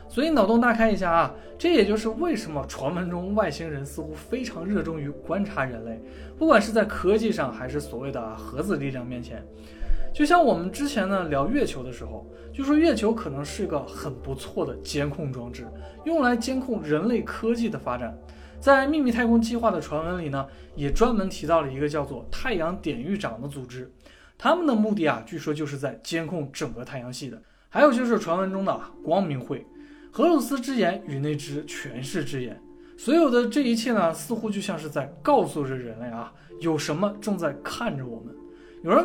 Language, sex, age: Chinese, male, 20-39